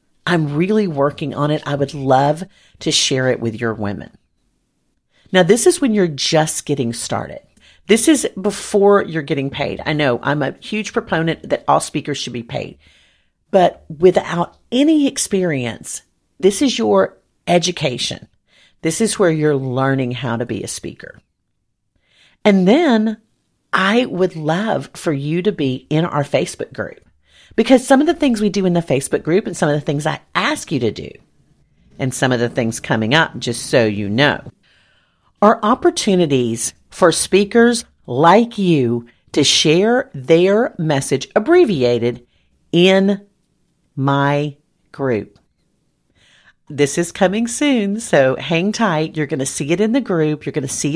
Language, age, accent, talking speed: English, 40-59, American, 160 wpm